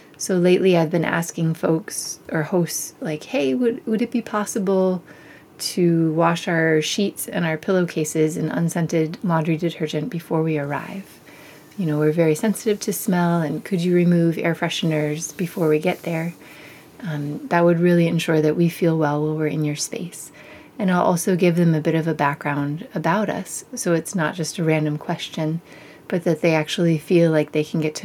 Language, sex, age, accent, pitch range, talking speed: English, female, 30-49, American, 155-180 Hz, 190 wpm